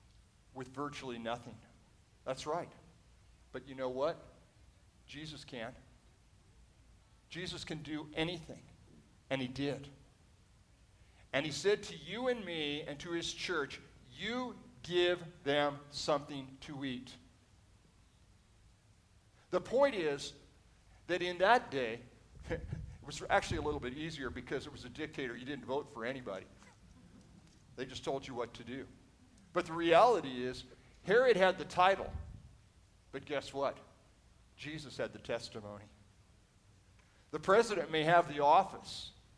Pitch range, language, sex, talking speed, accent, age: 110-170 Hz, English, male, 135 wpm, American, 50-69